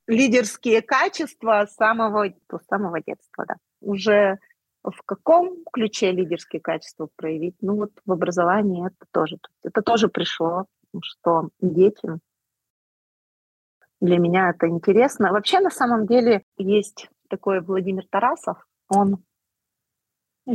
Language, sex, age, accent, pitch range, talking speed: Russian, female, 30-49, native, 180-230 Hz, 115 wpm